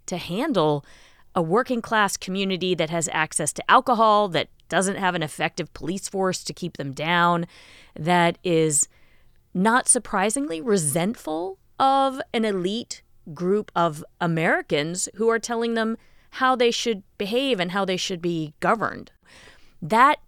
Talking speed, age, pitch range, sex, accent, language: 140 wpm, 30-49, 160-205 Hz, female, American, English